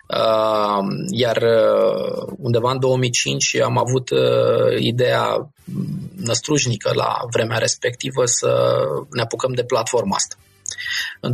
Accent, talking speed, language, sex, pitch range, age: native, 95 wpm, Romanian, male, 110-165 Hz, 20-39